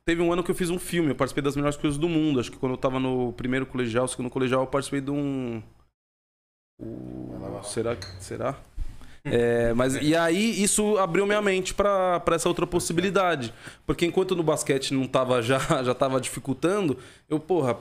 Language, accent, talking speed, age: Portuguese, Brazilian, 190 wpm, 20-39